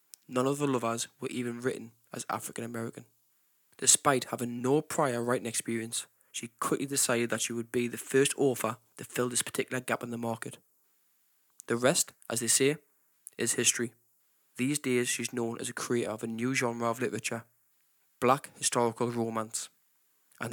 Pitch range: 115-130 Hz